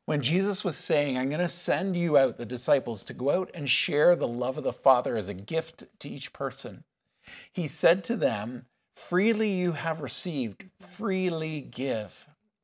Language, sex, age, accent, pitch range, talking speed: English, male, 50-69, American, 130-180 Hz, 180 wpm